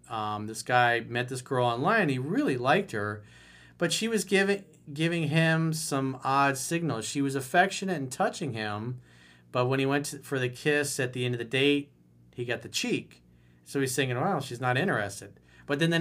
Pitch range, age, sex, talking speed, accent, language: 110-150 Hz, 40-59, male, 200 wpm, American, English